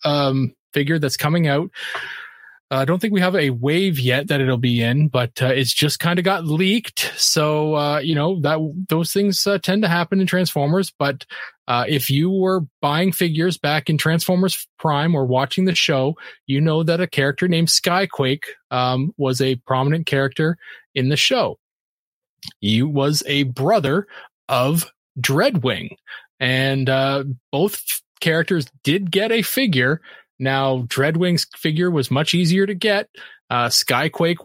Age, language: 20-39, English